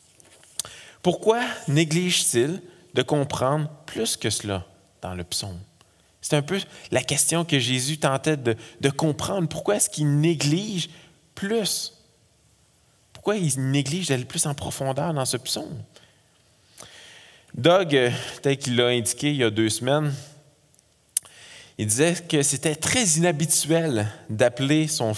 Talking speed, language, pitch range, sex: 130 wpm, French, 130-165 Hz, male